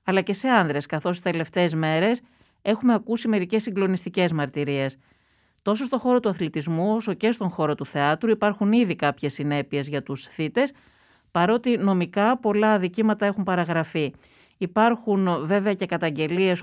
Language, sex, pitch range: Greek, female, 160-215 Hz